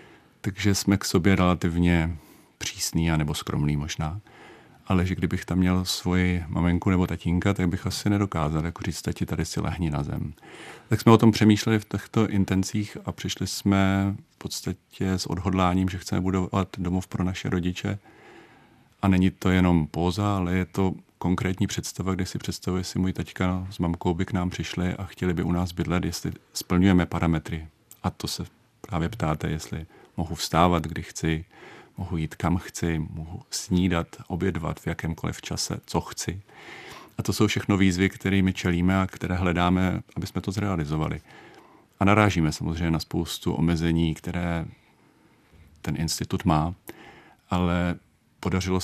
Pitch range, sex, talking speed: 85-95 Hz, male, 160 wpm